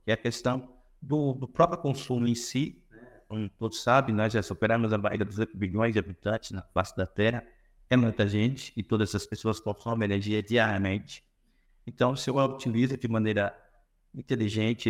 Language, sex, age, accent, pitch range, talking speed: Portuguese, male, 60-79, Brazilian, 105-130 Hz, 180 wpm